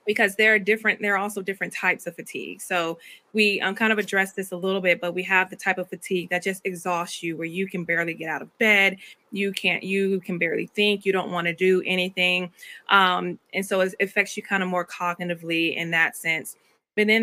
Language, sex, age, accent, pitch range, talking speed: English, female, 20-39, American, 175-200 Hz, 235 wpm